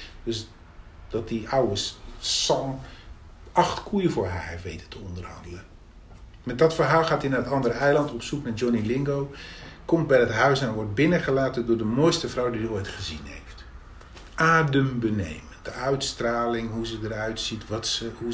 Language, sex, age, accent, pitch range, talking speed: Dutch, male, 40-59, Dutch, 90-140 Hz, 165 wpm